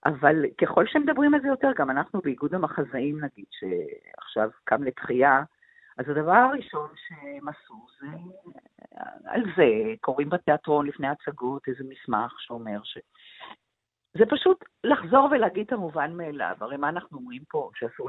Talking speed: 145 wpm